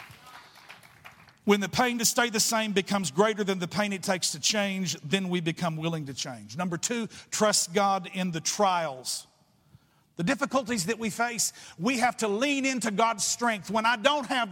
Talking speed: 185 wpm